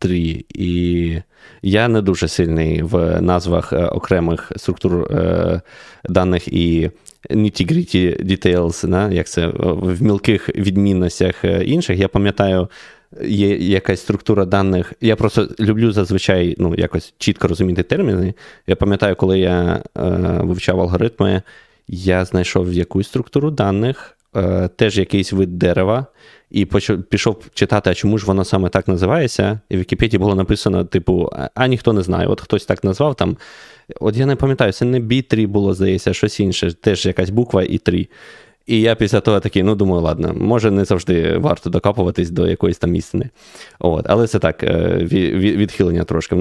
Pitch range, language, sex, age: 90-105 Hz, Ukrainian, male, 20-39